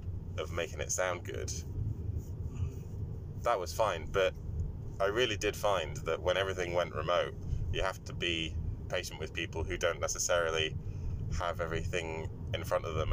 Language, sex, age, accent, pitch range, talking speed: English, male, 20-39, British, 80-100 Hz, 155 wpm